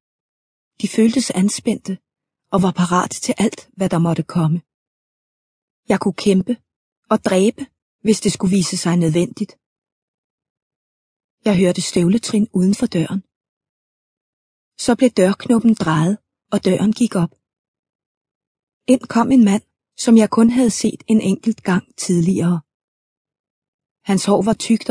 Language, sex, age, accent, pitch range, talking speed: Danish, female, 30-49, native, 180-220 Hz, 130 wpm